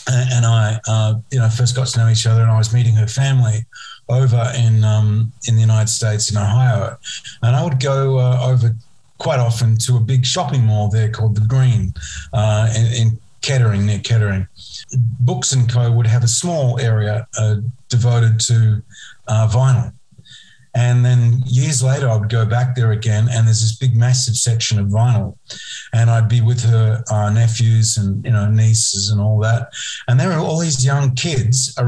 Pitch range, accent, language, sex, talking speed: 110-130 Hz, Australian, English, male, 190 wpm